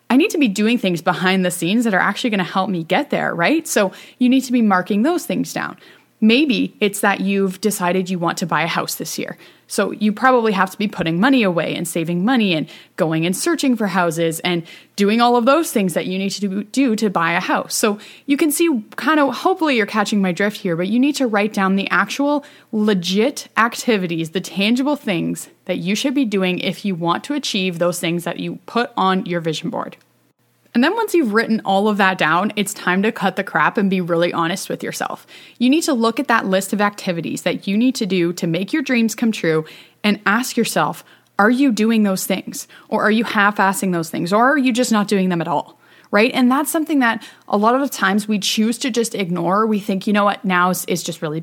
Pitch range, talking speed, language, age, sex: 185-250 Hz, 240 wpm, English, 20-39, female